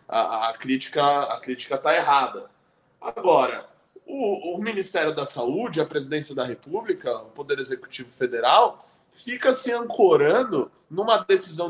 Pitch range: 185-295 Hz